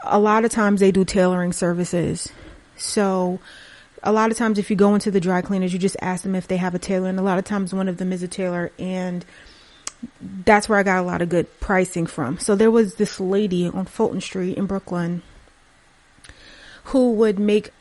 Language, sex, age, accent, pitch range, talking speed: English, female, 30-49, American, 180-205 Hz, 215 wpm